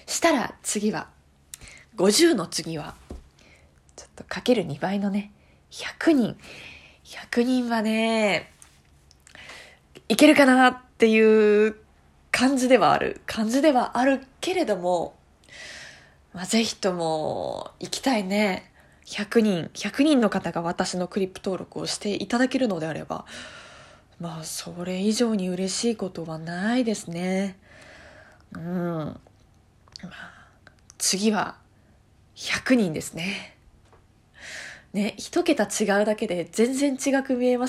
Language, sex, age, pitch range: Japanese, female, 20-39, 170-250 Hz